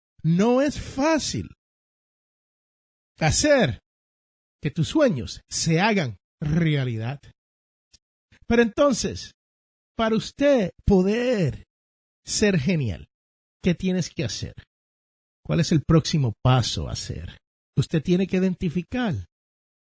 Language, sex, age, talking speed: Spanish, male, 50-69, 95 wpm